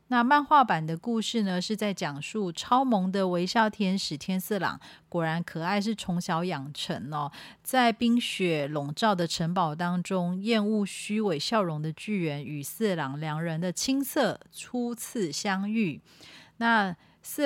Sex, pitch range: female, 175-250 Hz